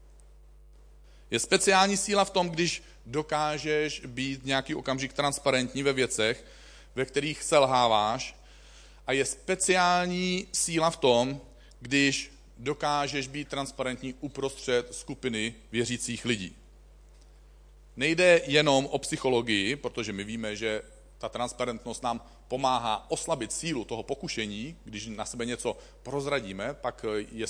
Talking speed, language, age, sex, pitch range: 115 wpm, Czech, 40-59, male, 110-150 Hz